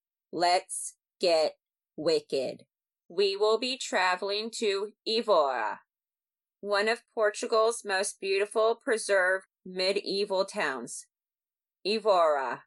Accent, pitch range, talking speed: American, 190-230 Hz, 85 wpm